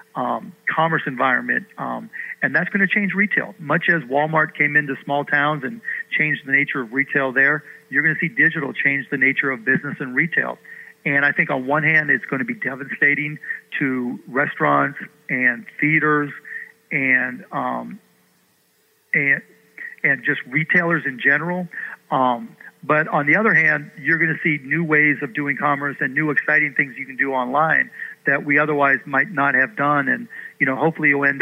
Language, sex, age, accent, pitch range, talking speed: English, male, 40-59, American, 135-160 Hz, 180 wpm